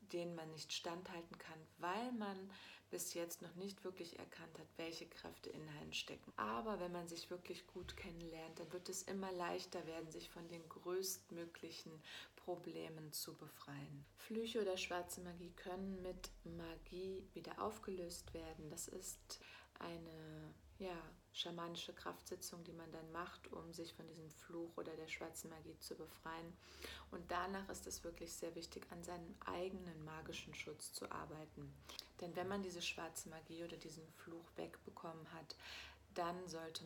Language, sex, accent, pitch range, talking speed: German, female, German, 160-180 Hz, 155 wpm